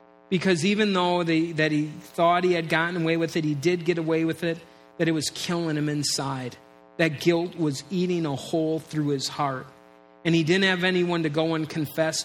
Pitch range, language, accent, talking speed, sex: 140-170 Hz, English, American, 205 wpm, male